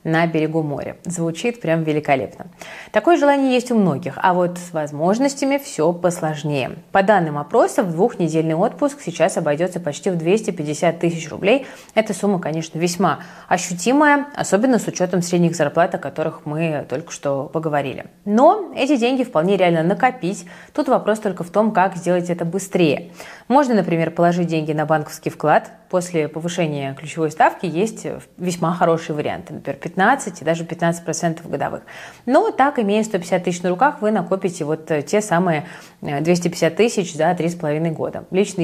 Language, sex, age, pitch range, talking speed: Russian, female, 20-39, 160-200 Hz, 150 wpm